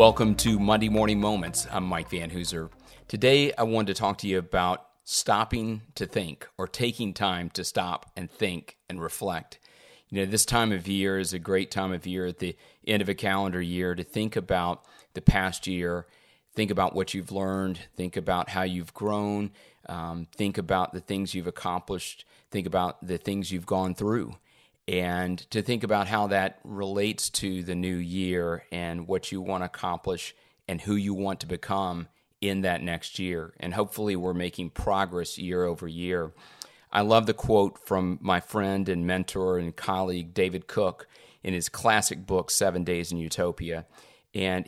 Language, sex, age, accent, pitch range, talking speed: English, male, 30-49, American, 90-100 Hz, 180 wpm